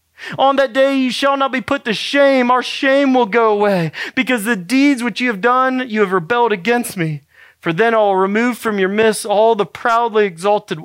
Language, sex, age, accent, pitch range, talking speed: English, male, 40-59, American, 160-215 Hz, 210 wpm